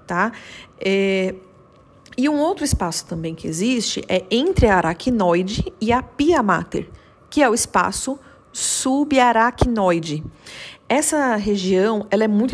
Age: 40-59